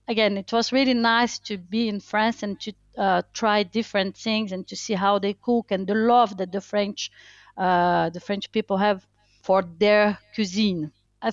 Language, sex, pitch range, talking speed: English, female, 170-210 Hz, 190 wpm